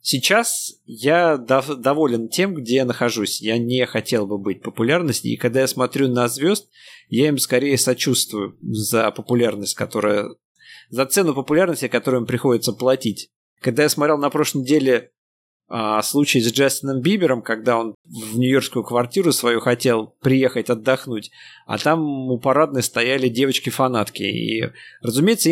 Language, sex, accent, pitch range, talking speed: Russian, male, native, 120-150 Hz, 145 wpm